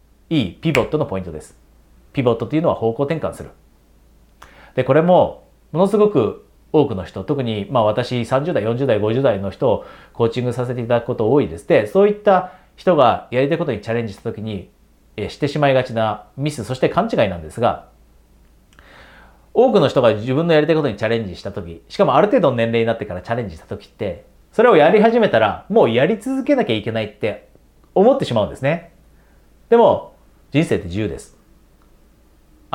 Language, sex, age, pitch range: Japanese, male, 40-59, 95-150 Hz